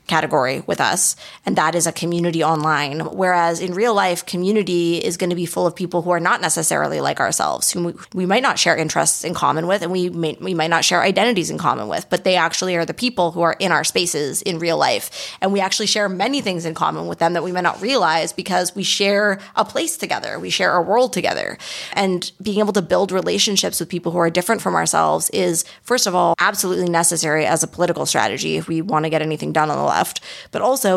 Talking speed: 240 wpm